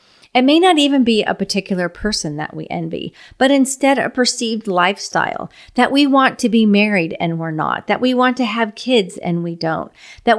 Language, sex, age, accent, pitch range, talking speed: English, female, 40-59, American, 190-250 Hz, 200 wpm